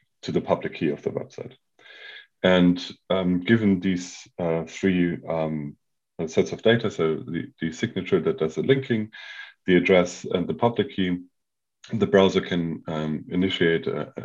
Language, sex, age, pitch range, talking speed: English, male, 40-59, 85-100 Hz, 155 wpm